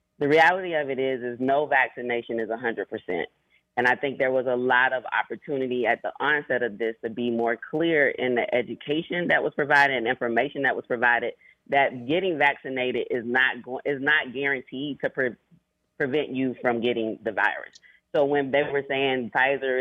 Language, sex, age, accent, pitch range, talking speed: English, female, 30-49, American, 125-145 Hz, 180 wpm